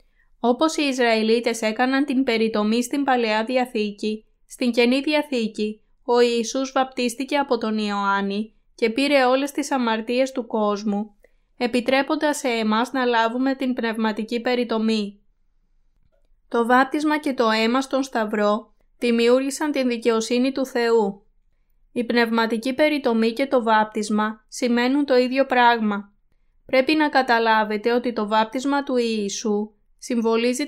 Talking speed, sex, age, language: 125 wpm, female, 20-39, Greek